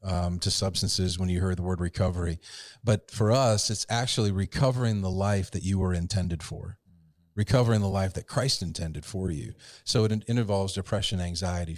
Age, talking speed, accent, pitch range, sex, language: 40-59, 185 wpm, American, 90-115 Hz, male, English